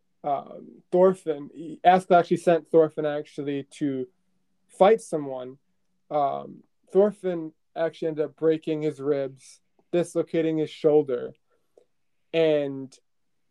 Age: 20-39